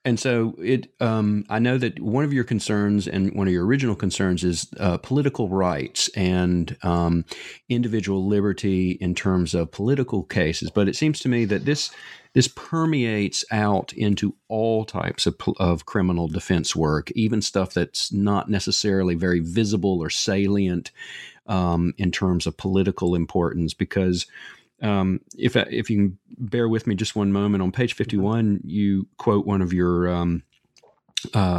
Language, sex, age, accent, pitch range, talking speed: English, male, 40-59, American, 90-110 Hz, 165 wpm